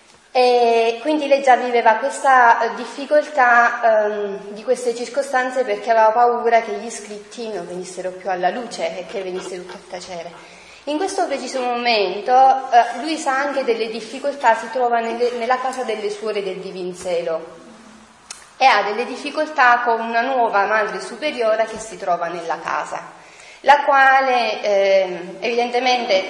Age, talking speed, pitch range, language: 30-49, 140 wpm, 195-245 Hz, Italian